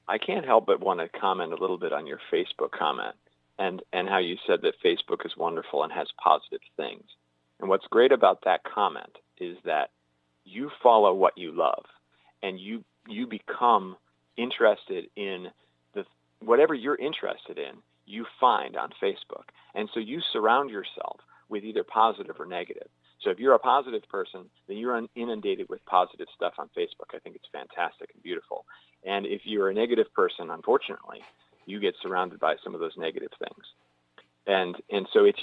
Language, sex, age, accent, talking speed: English, male, 40-59, American, 180 wpm